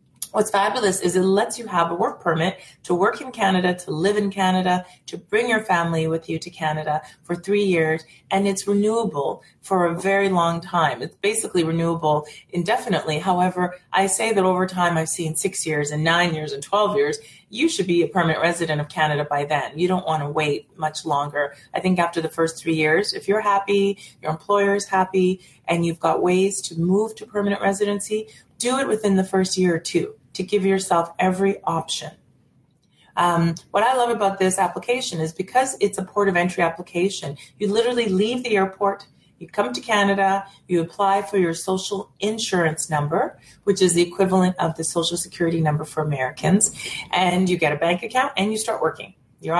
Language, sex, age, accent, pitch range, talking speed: English, female, 30-49, American, 165-200 Hz, 195 wpm